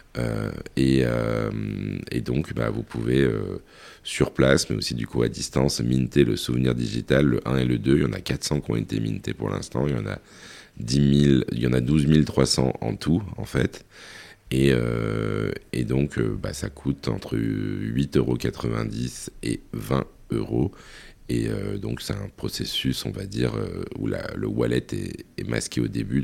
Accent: French